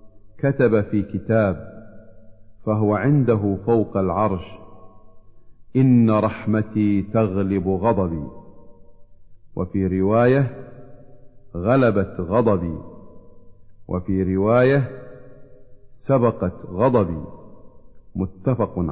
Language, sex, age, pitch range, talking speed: Arabic, male, 50-69, 100-125 Hz, 65 wpm